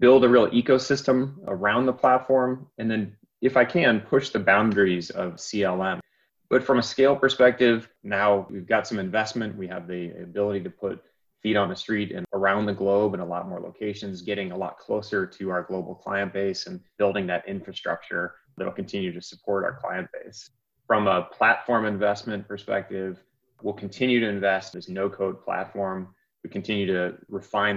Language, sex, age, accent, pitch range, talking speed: English, male, 20-39, American, 95-115 Hz, 180 wpm